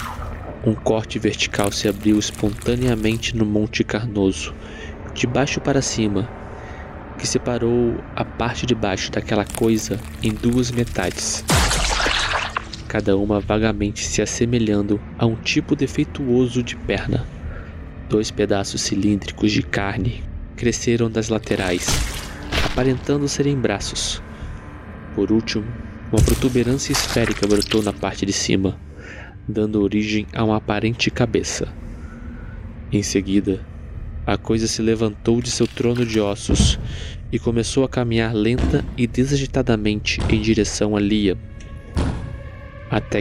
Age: 20-39